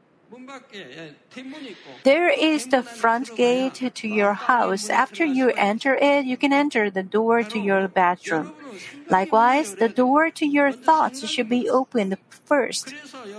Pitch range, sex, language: 215-275 Hz, female, Korean